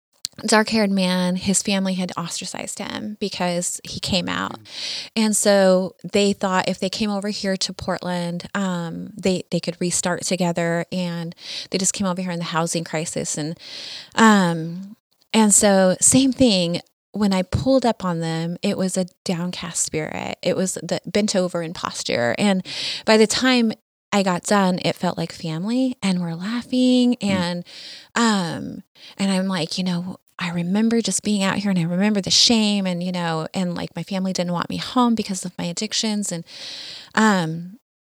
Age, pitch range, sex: 20-39, 175-210 Hz, female